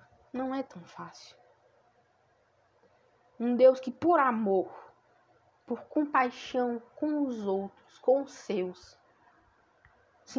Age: 10-29